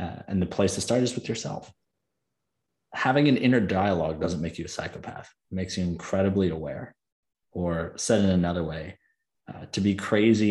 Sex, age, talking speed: male, 30-49, 185 wpm